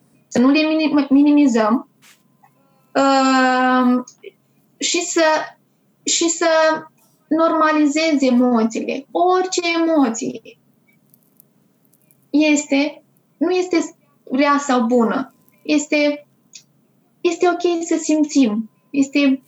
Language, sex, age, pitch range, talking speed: Romanian, female, 20-39, 250-305 Hz, 75 wpm